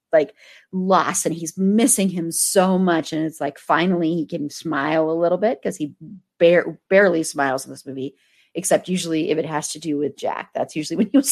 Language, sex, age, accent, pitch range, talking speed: English, female, 30-49, American, 160-200 Hz, 205 wpm